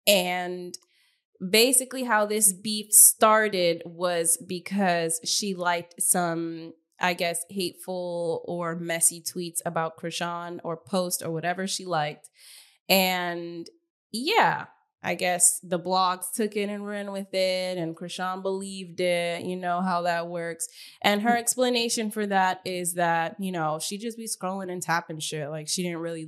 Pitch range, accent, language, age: 170-210 Hz, American, English, 10-29